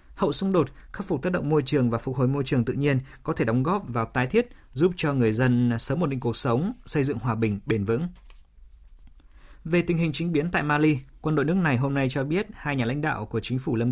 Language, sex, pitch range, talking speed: Vietnamese, male, 120-155 Hz, 265 wpm